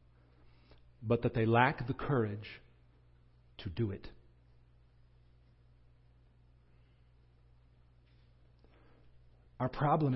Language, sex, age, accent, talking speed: English, male, 50-69, American, 65 wpm